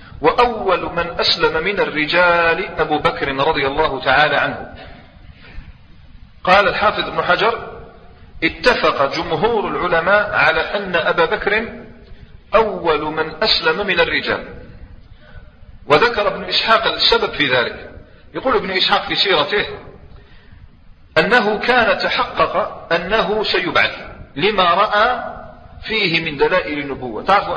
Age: 40-59